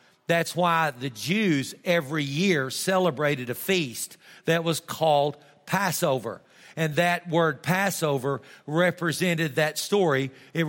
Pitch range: 145-175 Hz